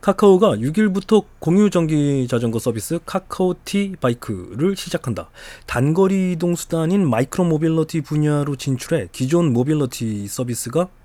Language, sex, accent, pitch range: Korean, male, native, 125-190 Hz